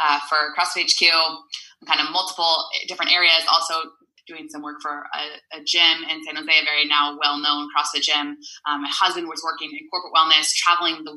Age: 20-39